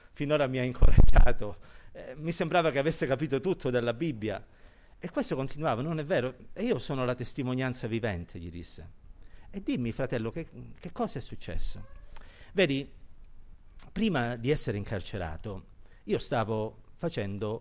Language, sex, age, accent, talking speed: Italian, male, 50-69, native, 145 wpm